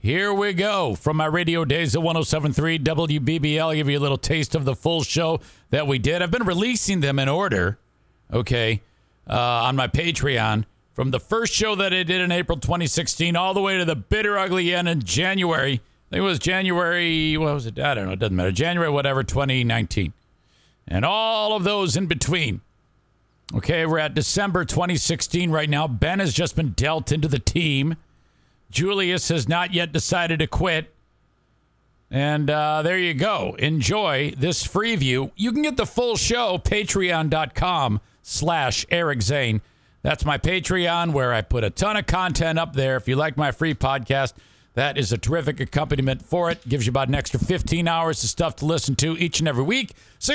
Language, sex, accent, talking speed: English, male, American, 190 wpm